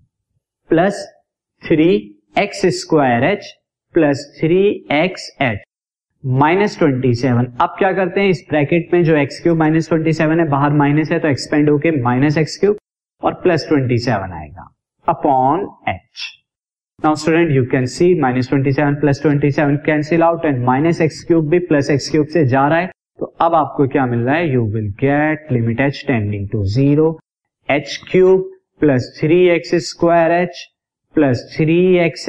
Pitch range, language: 130-170 Hz, Hindi